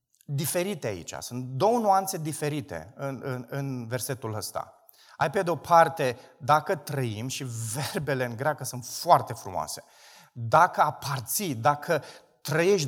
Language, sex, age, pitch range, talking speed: Romanian, male, 30-49, 135-200 Hz, 125 wpm